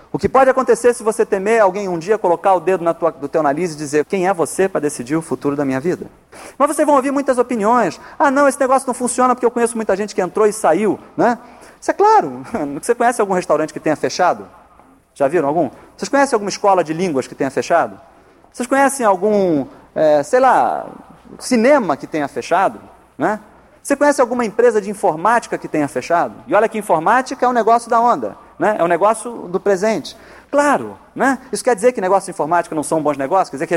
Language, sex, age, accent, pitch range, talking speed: Portuguese, male, 40-59, Brazilian, 180-245 Hz, 215 wpm